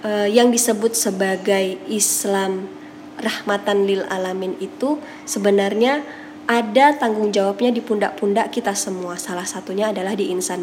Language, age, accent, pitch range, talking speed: Indonesian, 20-39, native, 200-245 Hz, 125 wpm